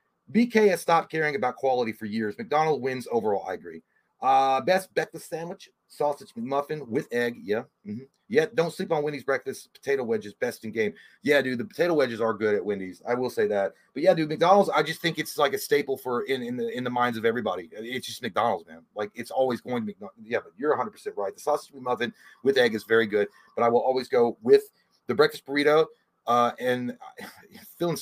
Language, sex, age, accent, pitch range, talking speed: English, male, 30-49, American, 120-190 Hz, 220 wpm